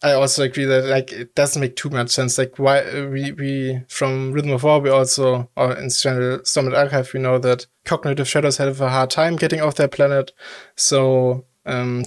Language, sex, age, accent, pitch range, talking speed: English, male, 20-39, German, 125-140 Hz, 205 wpm